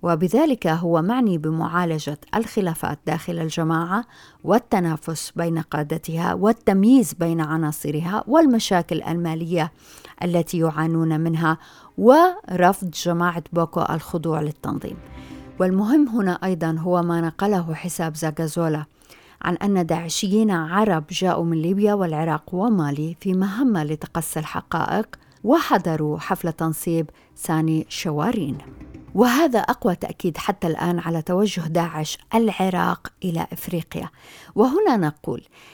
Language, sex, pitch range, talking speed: Arabic, female, 160-195 Hz, 105 wpm